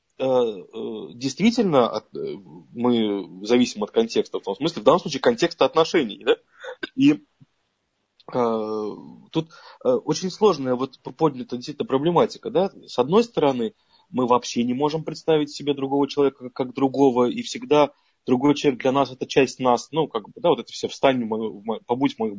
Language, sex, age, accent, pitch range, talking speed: Russian, male, 20-39, native, 125-185 Hz, 160 wpm